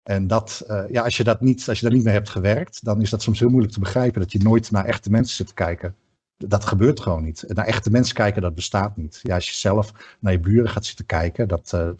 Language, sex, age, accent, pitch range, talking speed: Dutch, male, 50-69, Dutch, 95-115 Hz, 280 wpm